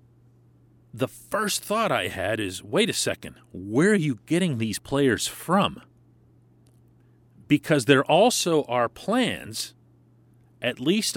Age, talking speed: 40-59, 125 wpm